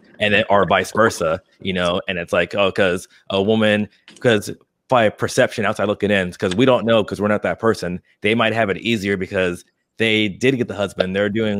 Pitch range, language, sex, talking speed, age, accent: 95-110 Hz, English, male, 215 wpm, 30-49, American